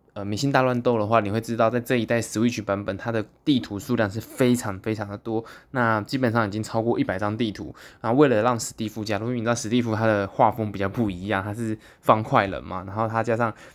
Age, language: 20-39, Chinese